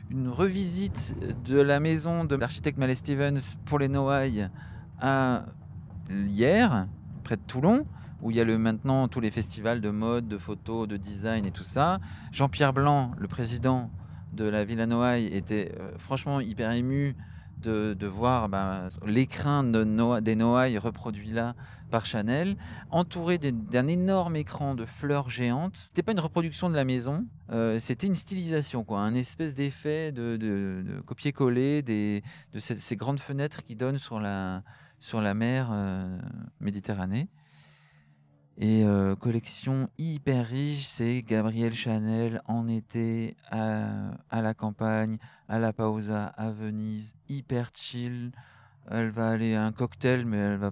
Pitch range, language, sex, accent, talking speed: 110-135 Hz, French, male, French, 150 wpm